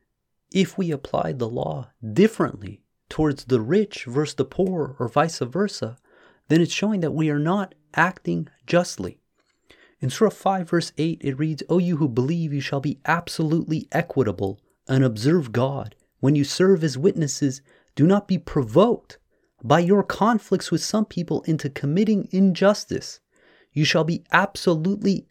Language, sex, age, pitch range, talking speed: English, male, 30-49, 135-185 Hz, 155 wpm